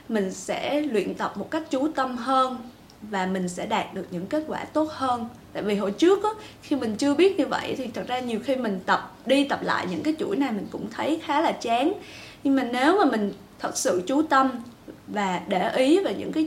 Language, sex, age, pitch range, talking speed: Vietnamese, female, 20-39, 220-305 Hz, 235 wpm